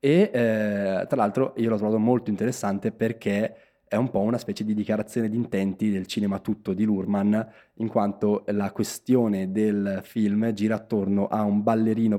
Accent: native